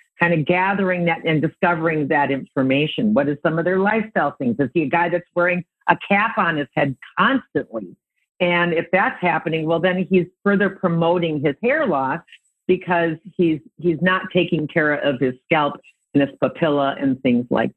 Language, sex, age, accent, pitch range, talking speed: English, female, 50-69, American, 155-195 Hz, 180 wpm